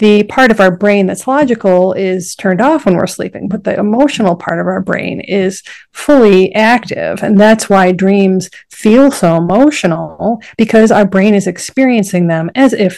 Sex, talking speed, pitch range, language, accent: female, 175 wpm, 190-230 Hz, English, American